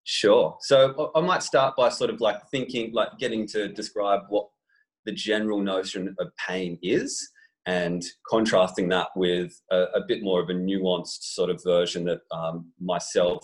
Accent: Australian